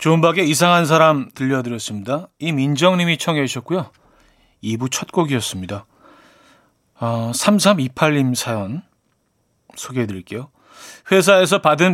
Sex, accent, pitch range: male, native, 125-180 Hz